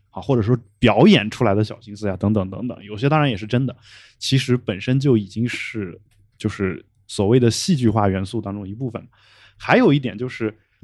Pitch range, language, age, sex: 105-130 Hz, Chinese, 20-39, male